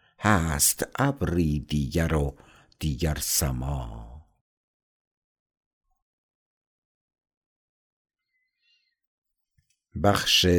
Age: 60-79